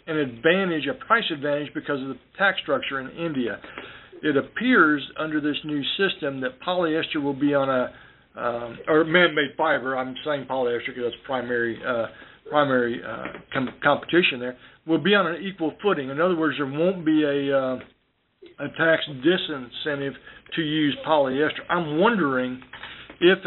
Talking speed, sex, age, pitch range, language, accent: 160 wpm, male, 60-79, 140-170 Hz, English, American